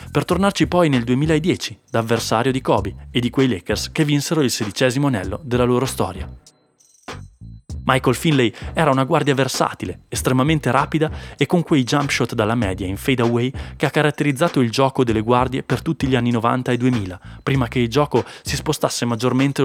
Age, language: 20-39, Italian